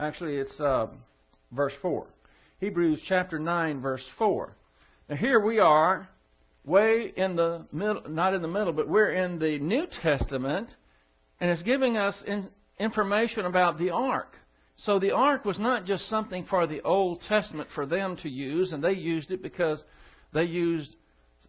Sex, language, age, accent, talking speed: male, English, 60-79, American, 160 wpm